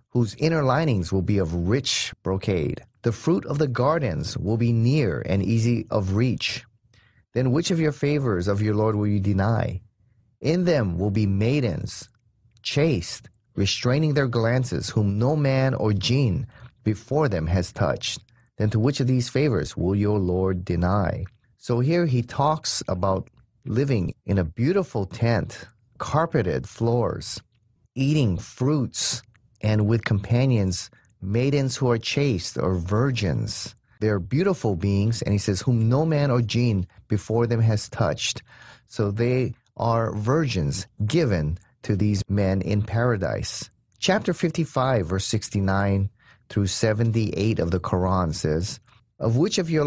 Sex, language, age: male, English, 30-49